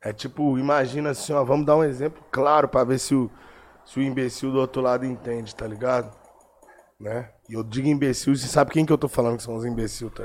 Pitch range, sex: 110-130 Hz, male